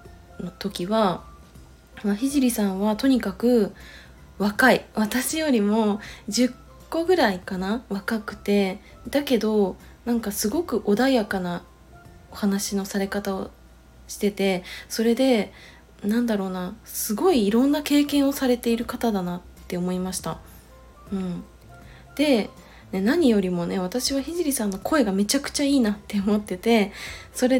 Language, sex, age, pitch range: Japanese, female, 20-39, 190-245 Hz